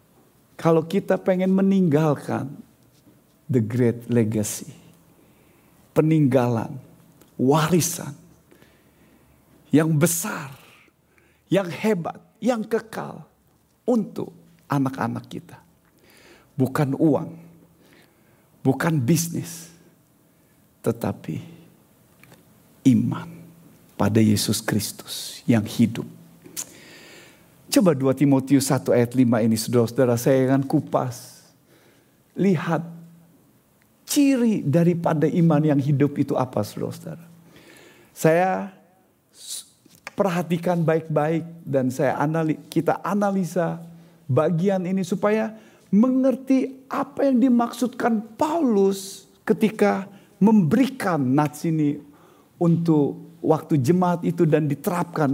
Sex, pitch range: male, 140-185 Hz